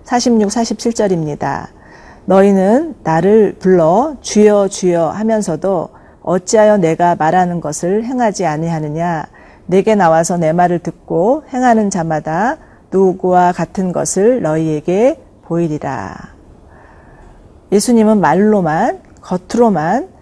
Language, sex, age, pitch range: Korean, female, 40-59, 165-215 Hz